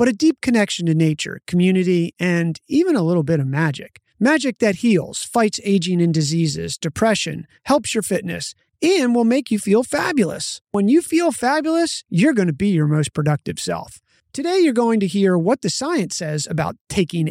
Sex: male